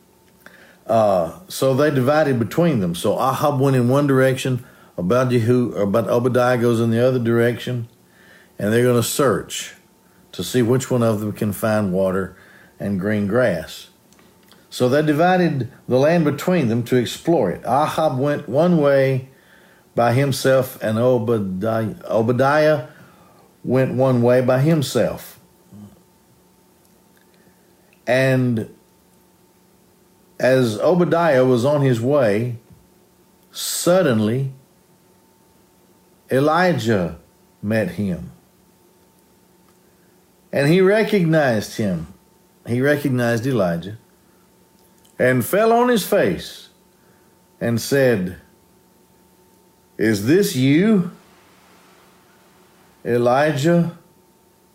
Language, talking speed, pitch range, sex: English, 95 wpm, 120-170 Hz, male